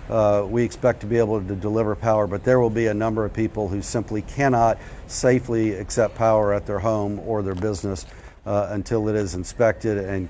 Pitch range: 105-130 Hz